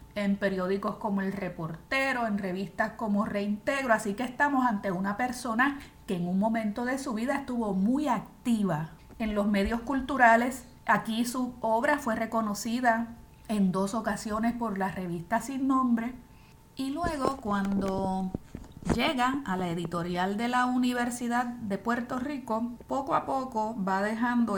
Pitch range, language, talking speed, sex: 195-245 Hz, Spanish, 145 wpm, female